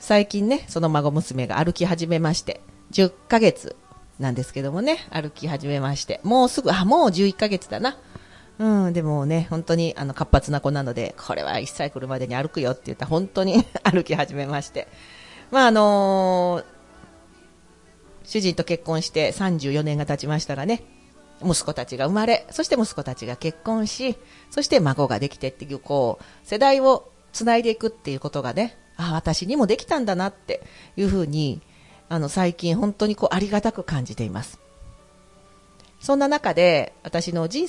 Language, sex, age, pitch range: Japanese, female, 40-59, 145-220 Hz